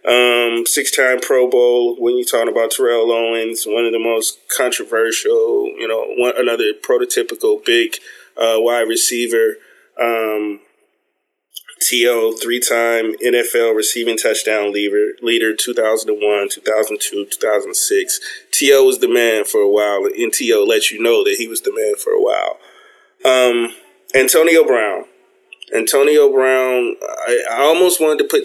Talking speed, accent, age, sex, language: 140 wpm, American, 20-39, male, English